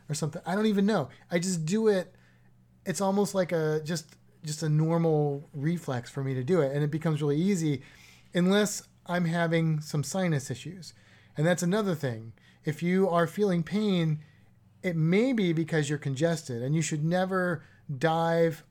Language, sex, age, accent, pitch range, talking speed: English, male, 30-49, American, 145-185 Hz, 175 wpm